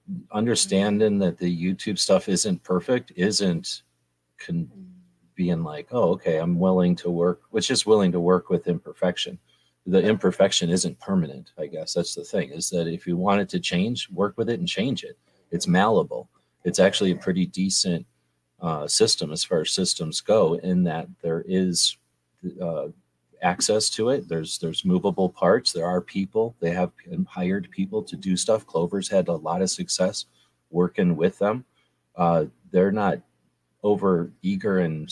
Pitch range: 85-100 Hz